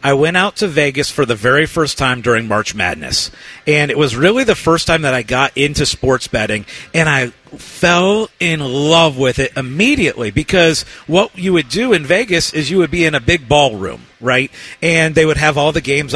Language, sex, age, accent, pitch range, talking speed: English, male, 40-59, American, 145-195 Hz, 210 wpm